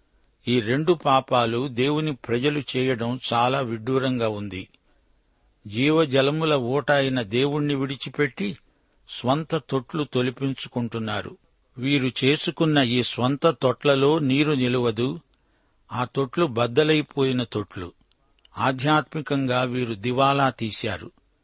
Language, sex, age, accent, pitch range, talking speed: Telugu, male, 60-79, native, 120-145 Hz, 90 wpm